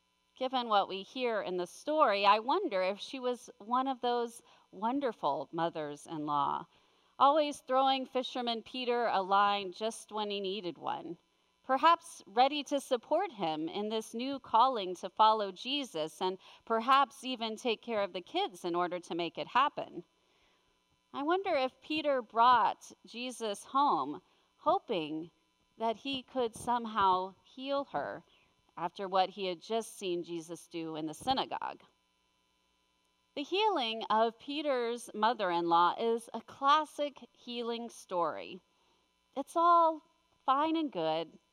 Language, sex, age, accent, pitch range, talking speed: English, female, 40-59, American, 200-285 Hz, 135 wpm